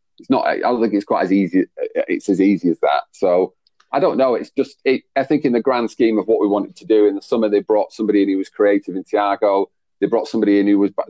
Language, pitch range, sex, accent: English, 95-110 Hz, male, British